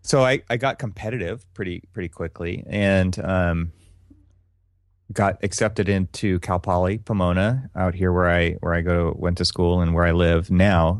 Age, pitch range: 30-49, 85-95 Hz